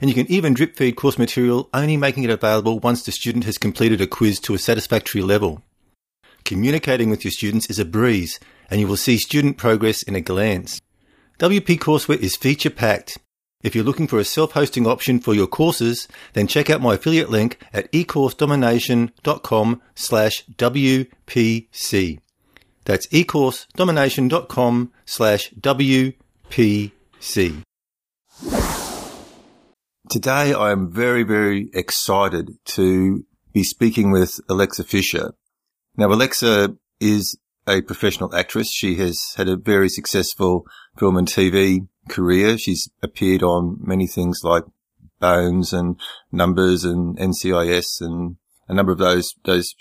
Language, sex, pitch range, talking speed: English, male, 95-125 Hz, 135 wpm